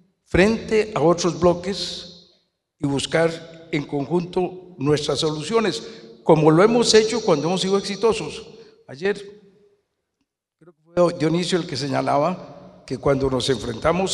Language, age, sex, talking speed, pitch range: Spanish, 60-79, male, 125 wpm, 145-185 Hz